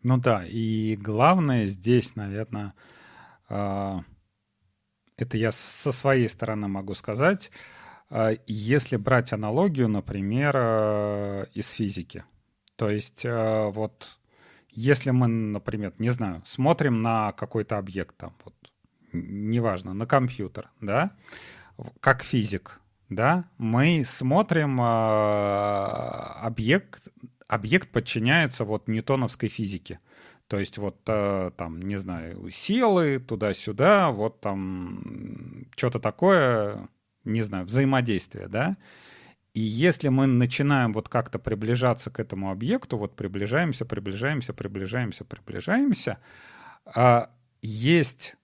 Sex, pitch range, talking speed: male, 105-130 Hz, 100 wpm